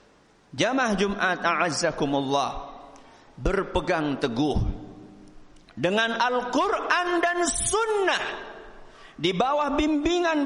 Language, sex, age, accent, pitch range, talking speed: Indonesian, male, 50-69, native, 225-300 Hz, 70 wpm